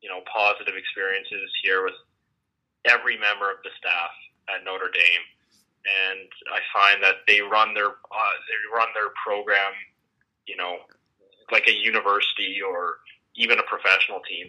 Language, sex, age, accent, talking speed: English, male, 20-39, American, 150 wpm